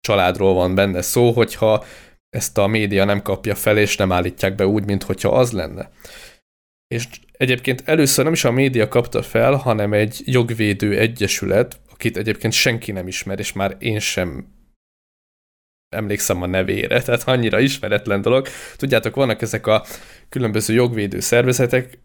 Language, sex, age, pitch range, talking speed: Hungarian, male, 20-39, 100-125 Hz, 150 wpm